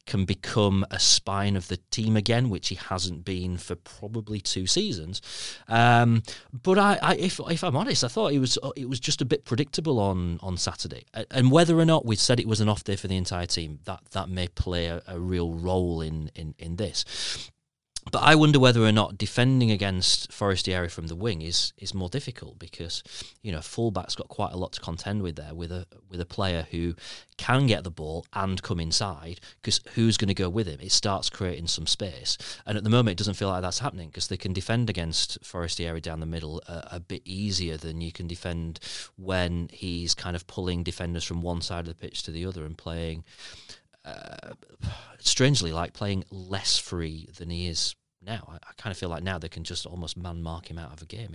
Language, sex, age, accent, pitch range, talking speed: English, male, 30-49, British, 85-110 Hz, 220 wpm